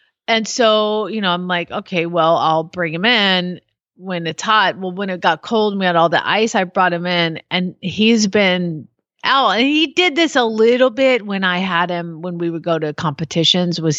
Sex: female